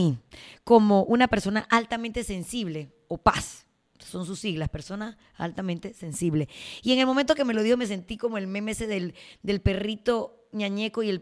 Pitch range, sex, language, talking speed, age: 180-220 Hz, female, Spanish, 175 wpm, 20-39